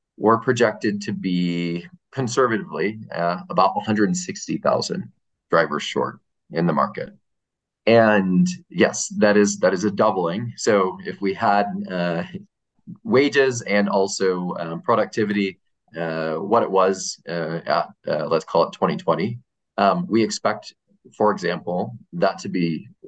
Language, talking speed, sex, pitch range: English, 125 wpm, male, 90-125 Hz